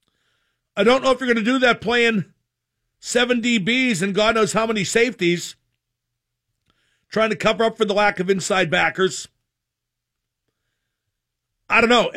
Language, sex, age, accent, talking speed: English, male, 50-69, American, 155 wpm